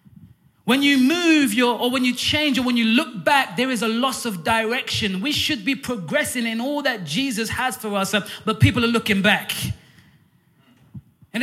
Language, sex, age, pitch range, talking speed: English, male, 20-39, 185-250 Hz, 190 wpm